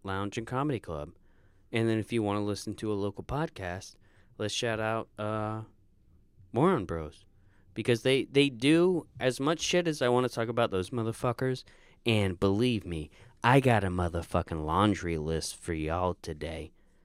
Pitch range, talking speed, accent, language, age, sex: 95-125 Hz, 170 wpm, American, English, 20-39, male